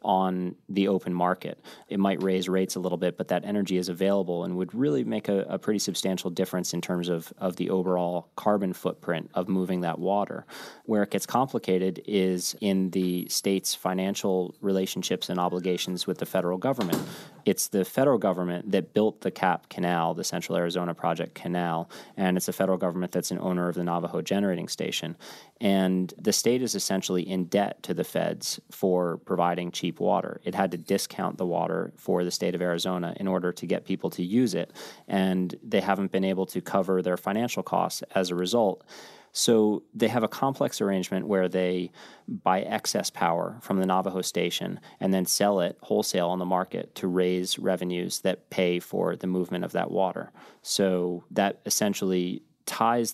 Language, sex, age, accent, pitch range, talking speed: English, male, 30-49, American, 90-95 Hz, 185 wpm